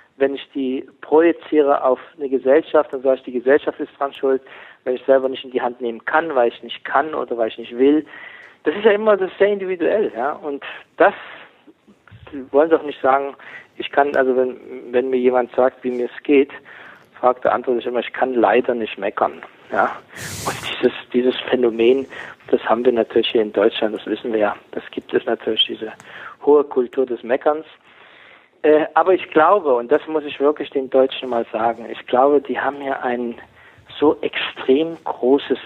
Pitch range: 130-155 Hz